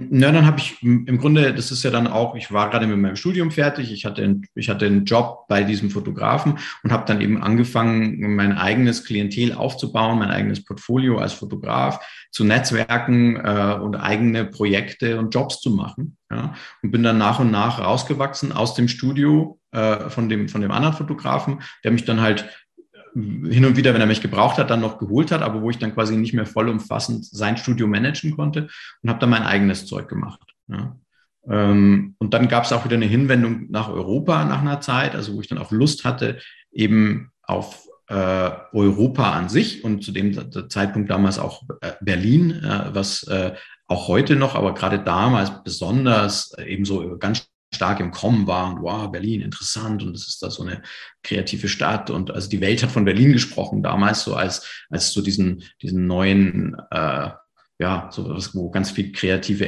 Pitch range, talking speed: 100-125 Hz, 190 wpm